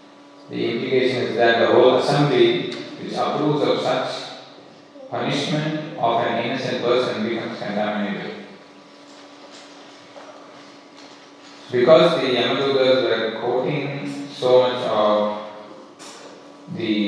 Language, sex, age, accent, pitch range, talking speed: English, male, 40-59, Indian, 105-130 Hz, 95 wpm